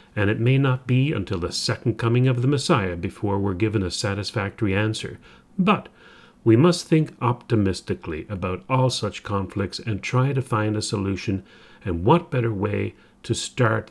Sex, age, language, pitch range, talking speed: male, 40-59, English, 95-125 Hz, 170 wpm